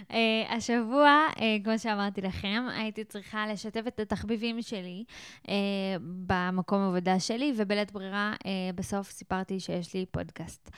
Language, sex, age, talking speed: Hebrew, female, 20-39, 135 wpm